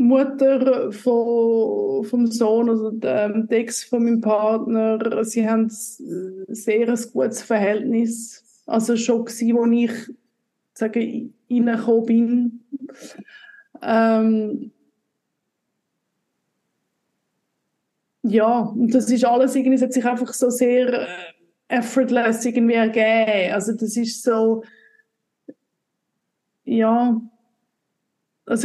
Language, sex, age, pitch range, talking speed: German, female, 20-39, 225-250 Hz, 100 wpm